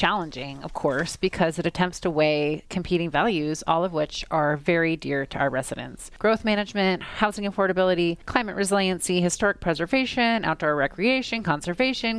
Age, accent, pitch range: 30-49, American, 155-205 Hz